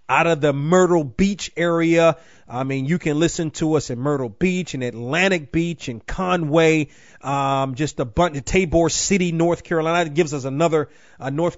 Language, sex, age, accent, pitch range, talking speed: English, male, 30-49, American, 145-175 Hz, 185 wpm